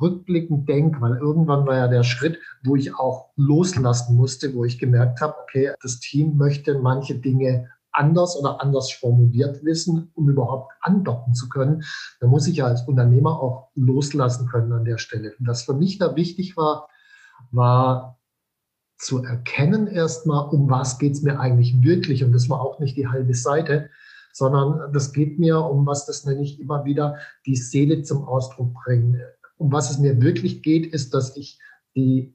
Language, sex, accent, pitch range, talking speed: German, male, German, 130-155 Hz, 180 wpm